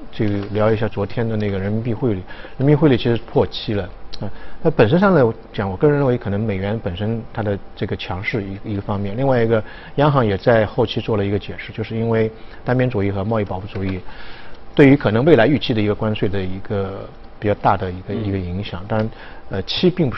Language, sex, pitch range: Chinese, male, 100-130 Hz